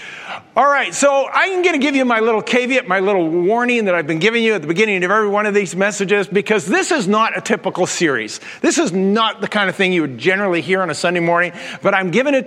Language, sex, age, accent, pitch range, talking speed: English, male, 50-69, American, 185-230 Hz, 260 wpm